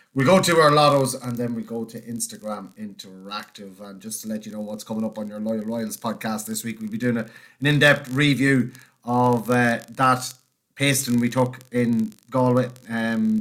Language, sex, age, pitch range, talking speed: English, male, 30-49, 110-135 Hz, 205 wpm